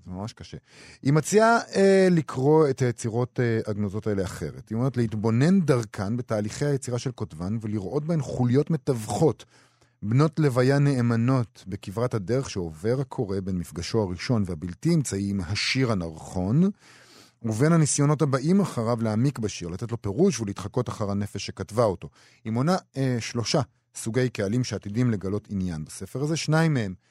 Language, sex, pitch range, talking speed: Hebrew, male, 105-140 Hz, 145 wpm